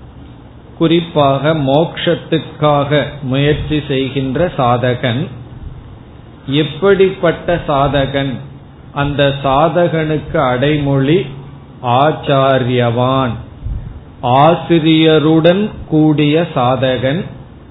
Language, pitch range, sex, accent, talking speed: Tamil, 130-155 Hz, male, native, 45 wpm